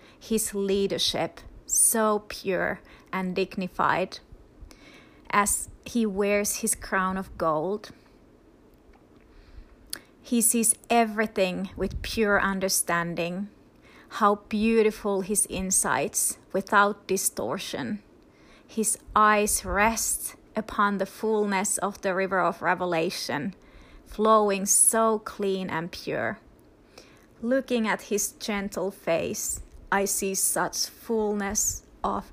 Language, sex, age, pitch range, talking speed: English, female, 30-49, 190-220 Hz, 95 wpm